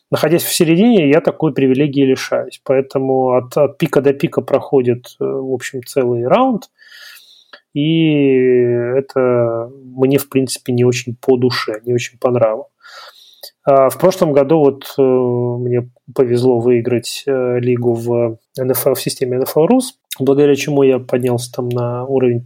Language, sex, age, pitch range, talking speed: Russian, male, 30-49, 125-140 Hz, 140 wpm